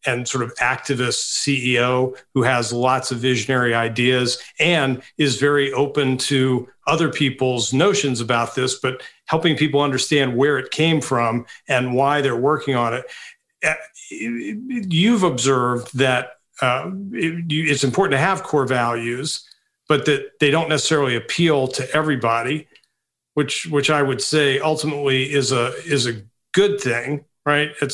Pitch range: 130-155 Hz